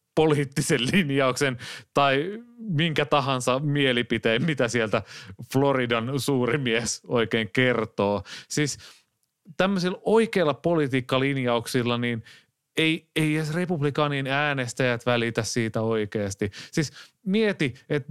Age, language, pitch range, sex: 30-49, Finnish, 105-145 Hz, male